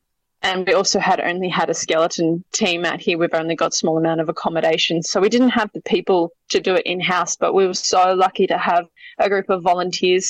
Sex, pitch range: female, 170-200 Hz